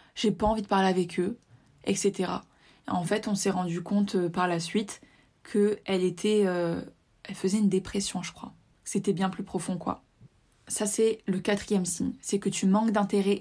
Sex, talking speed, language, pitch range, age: female, 190 wpm, French, 190-235 Hz, 20-39